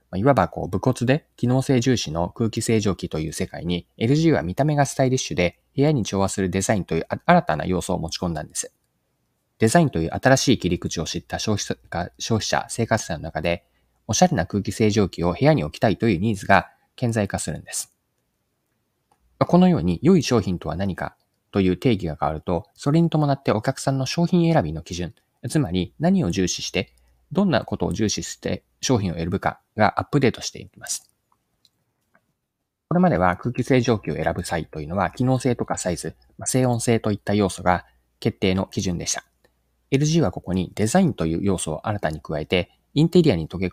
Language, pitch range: Japanese, 85-130 Hz